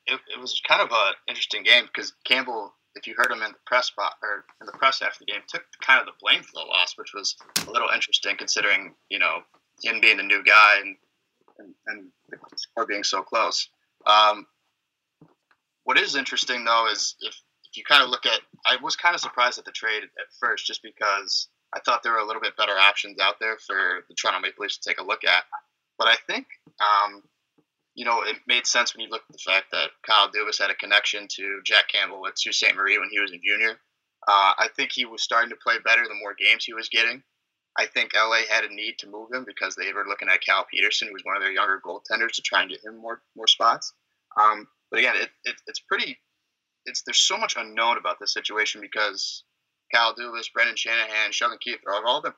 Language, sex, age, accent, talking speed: English, male, 20-39, American, 235 wpm